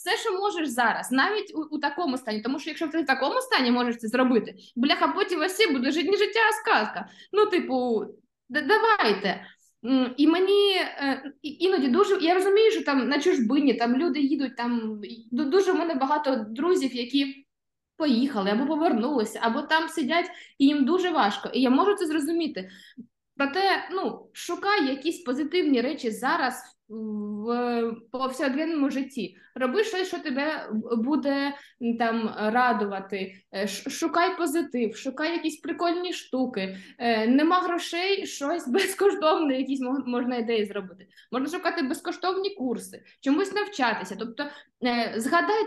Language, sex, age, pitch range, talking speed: Ukrainian, female, 20-39, 240-335 Hz, 145 wpm